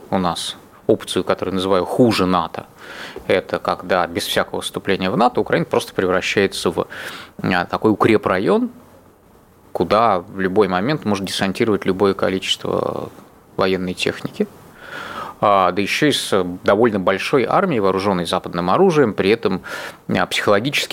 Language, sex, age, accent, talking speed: Russian, male, 20-39, native, 125 wpm